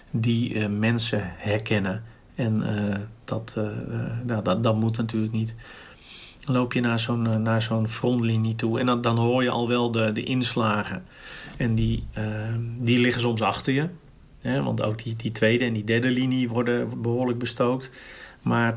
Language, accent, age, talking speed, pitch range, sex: Dutch, Dutch, 50-69, 180 wpm, 110-125 Hz, male